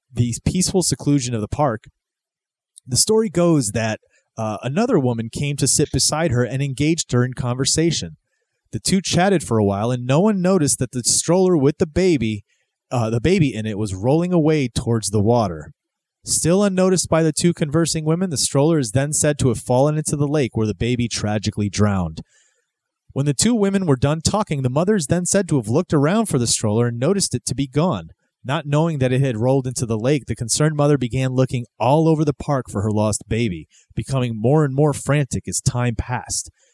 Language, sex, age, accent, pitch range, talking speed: English, male, 30-49, American, 115-155 Hz, 210 wpm